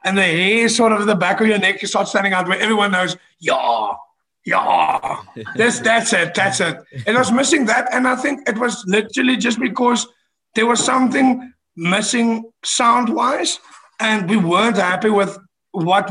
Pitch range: 185-235 Hz